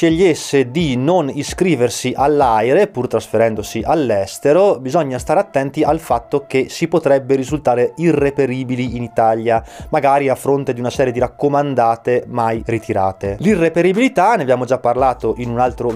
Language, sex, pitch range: Italian, male, 115-160 Hz